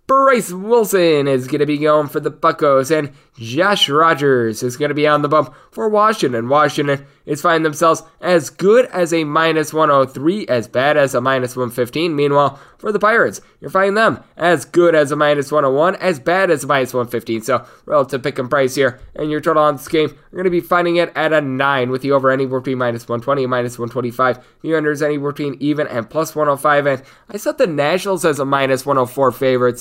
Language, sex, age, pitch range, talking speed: English, male, 10-29, 135-165 Hz, 215 wpm